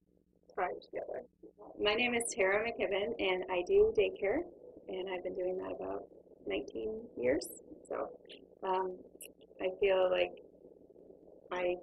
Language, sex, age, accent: English, female, 30-49, American